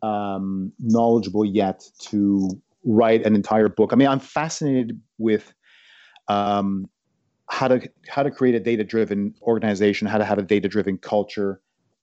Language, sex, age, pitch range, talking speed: English, male, 40-59, 105-150 Hz, 150 wpm